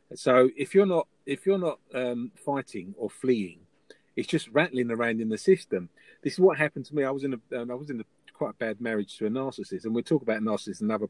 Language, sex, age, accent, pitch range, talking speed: English, male, 40-59, British, 115-150 Hz, 250 wpm